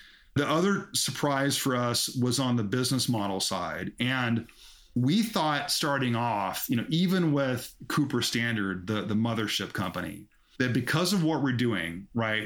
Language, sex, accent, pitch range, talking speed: English, male, American, 115-140 Hz, 160 wpm